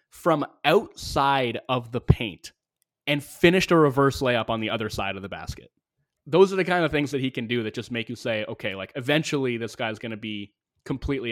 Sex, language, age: male, English, 20-39